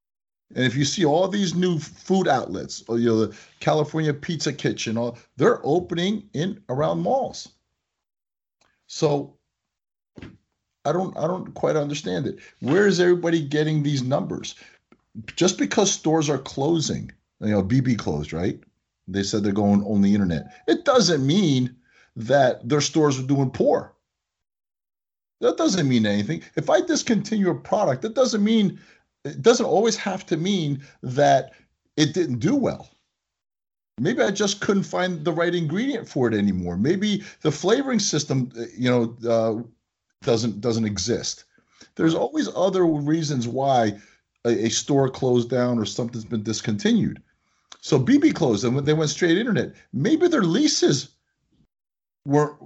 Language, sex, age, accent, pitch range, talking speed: English, male, 30-49, American, 120-185 Hz, 150 wpm